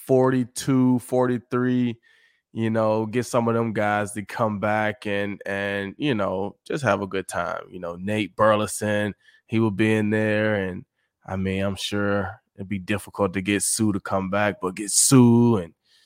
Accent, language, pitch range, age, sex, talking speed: American, English, 95-110 Hz, 20-39, male, 185 wpm